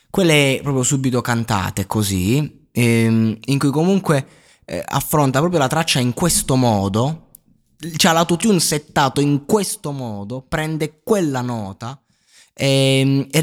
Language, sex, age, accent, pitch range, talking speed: Italian, male, 20-39, native, 115-160 Hz, 125 wpm